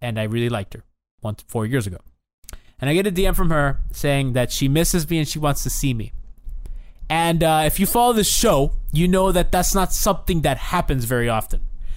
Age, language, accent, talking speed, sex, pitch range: 20-39, English, American, 220 wpm, male, 135-195 Hz